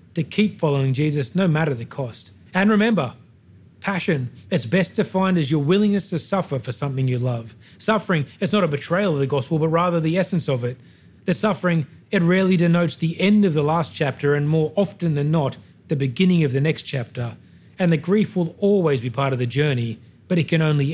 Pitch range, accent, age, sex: 125-170 Hz, Australian, 30-49, male